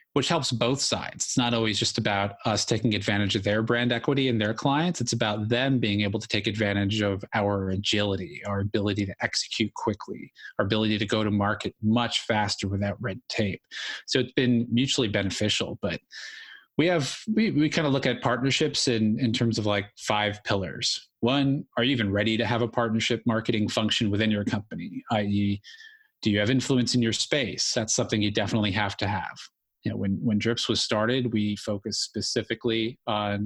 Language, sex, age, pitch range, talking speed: English, male, 30-49, 105-125 Hz, 195 wpm